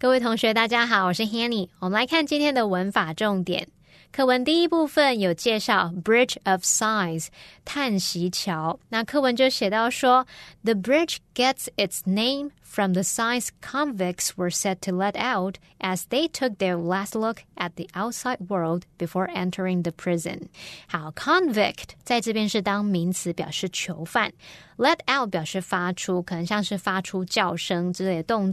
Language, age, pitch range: Chinese, 20-39, 185-255 Hz